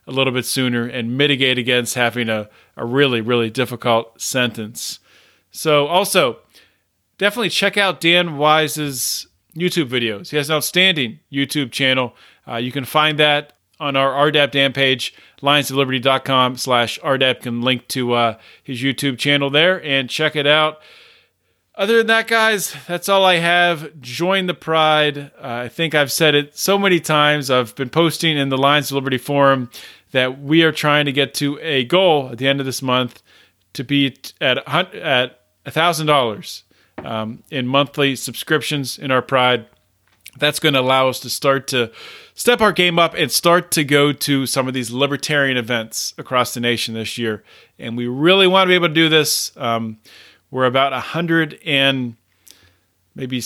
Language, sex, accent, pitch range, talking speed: English, male, American, 125-155 Hz, 175 wpm